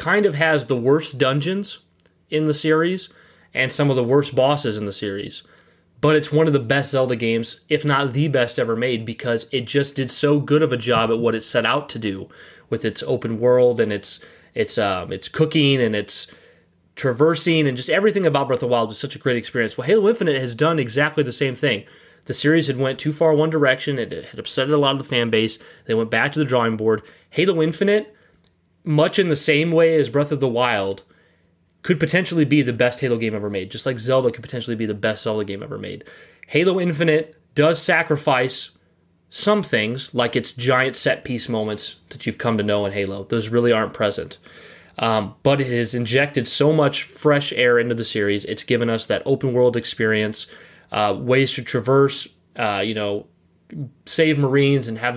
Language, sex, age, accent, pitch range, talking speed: English, male, 30-49, American, 115-150 Hz, 210 wpm